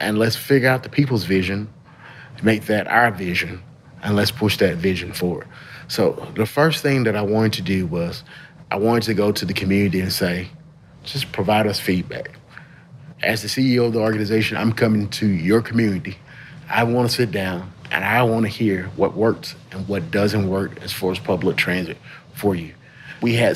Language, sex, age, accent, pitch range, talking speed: English, male, 30-49, American, 105-120 Hz, 195 wpm